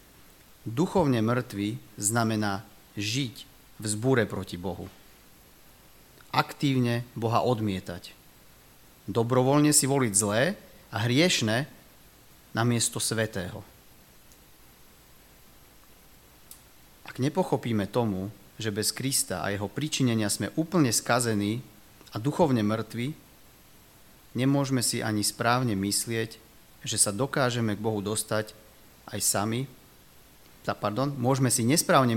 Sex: male